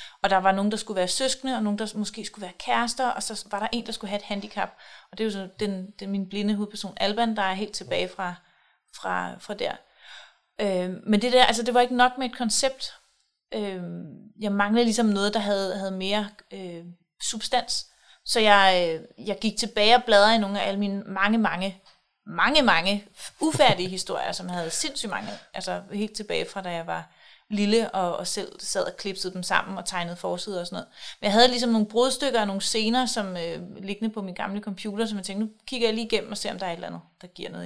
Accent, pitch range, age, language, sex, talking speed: native, 195-225 Hz, 30-49, Danish, female, 235 wpm